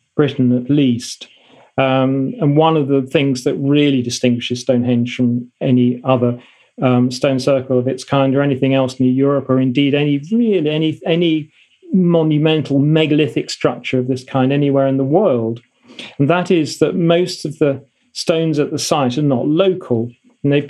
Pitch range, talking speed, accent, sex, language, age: 130-160 Hz, 170 wpm, British, male, English, 40-59